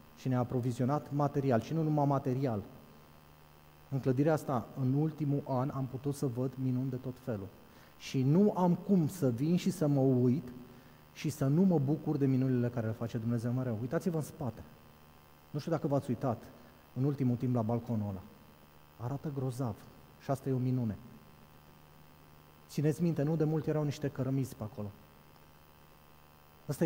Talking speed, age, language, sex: 170 wpm, 30-49, Romanian, male